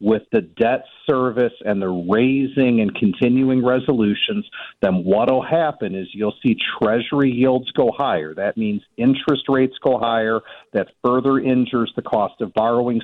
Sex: male